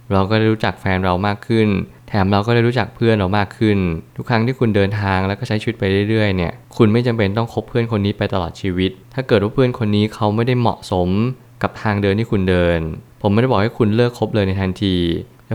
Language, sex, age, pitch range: Thai, male, 20-39, 100-120 Hz